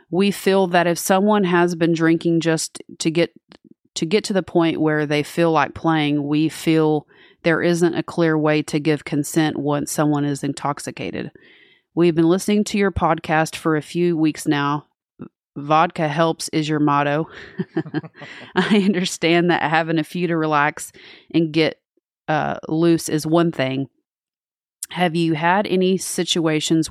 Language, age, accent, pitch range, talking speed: English, 30-49, American, 150-170 Hz, 160 wpm